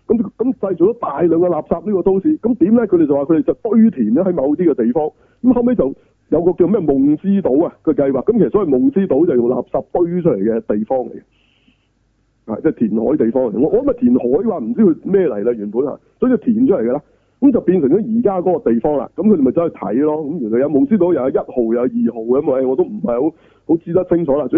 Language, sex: Chinese, male